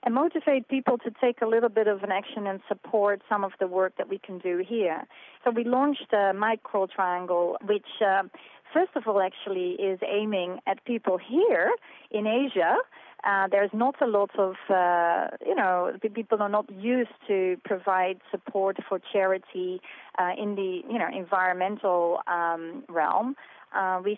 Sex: female